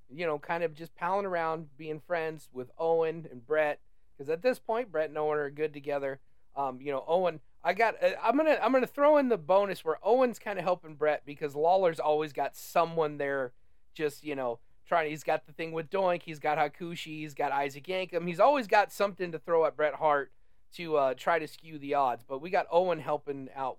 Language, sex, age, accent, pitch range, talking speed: English, male, 30-49, American, 145-195 Hz, 220 wpm